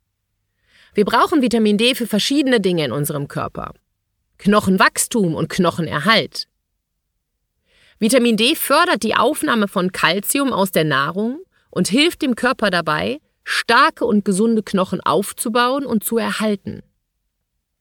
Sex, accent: female, German